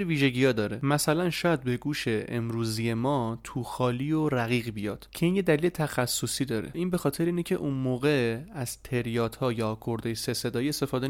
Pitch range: 115-135 Hz